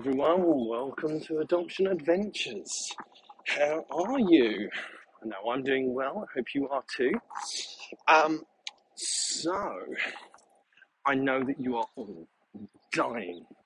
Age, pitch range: 40-59, 110-150 Hz